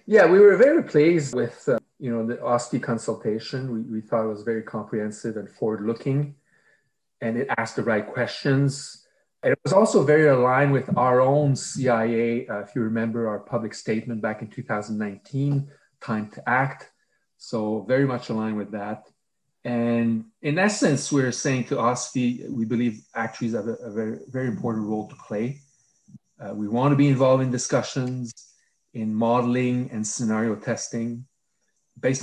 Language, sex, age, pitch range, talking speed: English, male, 30-49, 110-130 Hz, 165 wpm